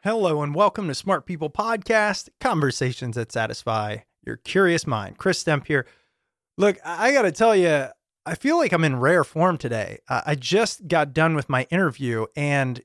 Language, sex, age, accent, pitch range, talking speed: English, male, 30-49, American, 130-180 Hz, 175 wpm